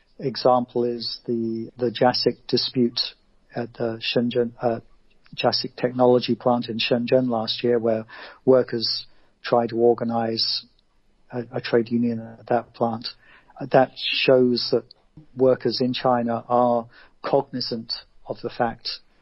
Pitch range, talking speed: 115-125 Hz, 125 wpm